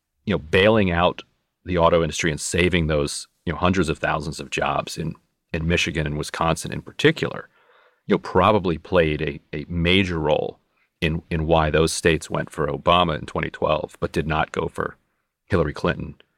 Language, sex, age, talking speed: English, male, 40-59, 180 wpm